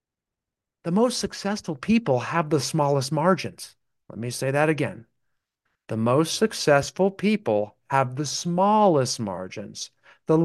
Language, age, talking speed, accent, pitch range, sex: English, 40-59, 125 wpm, American, 120-180 Hz, male